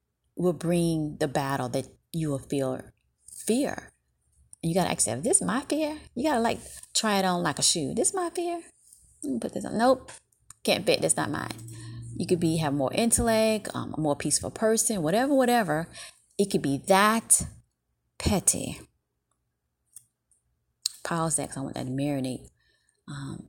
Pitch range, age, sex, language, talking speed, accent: 150-230 Hz, 30-49, female, English, 165 wpm, American